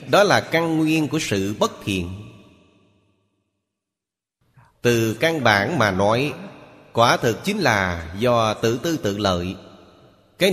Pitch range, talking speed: 105-130 Hz, 130 wpm